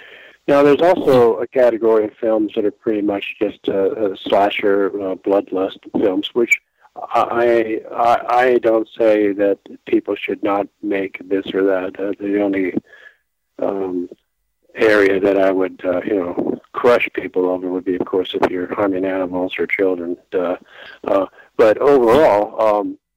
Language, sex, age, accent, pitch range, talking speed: English, male, 50-69, American, 95-130 Hz, 155 wpm